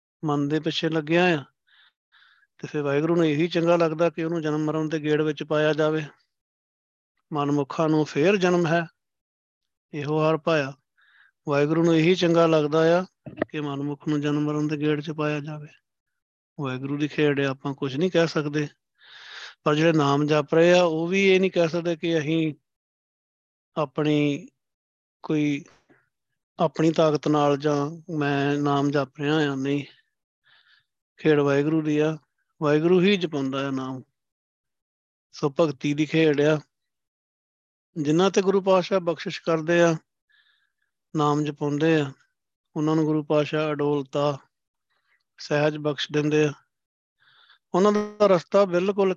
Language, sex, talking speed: Punjabi, male, 140 wpm